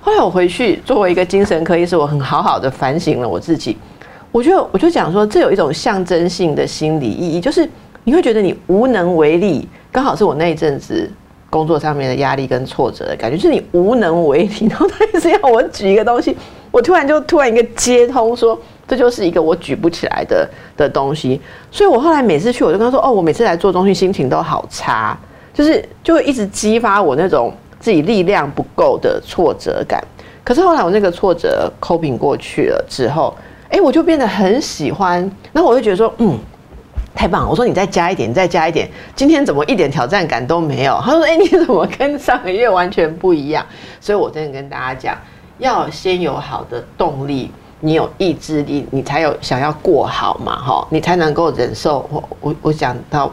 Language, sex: Chinese, female